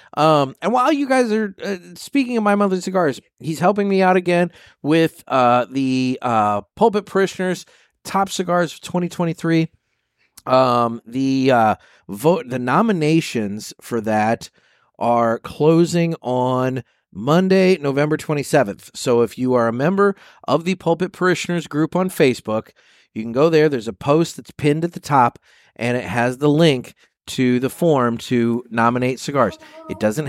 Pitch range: 120-170 Hz